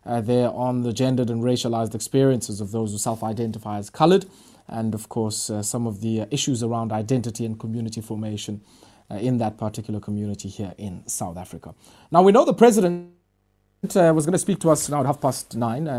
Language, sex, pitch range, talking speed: English, male, 115-155 Hz, 205 wpm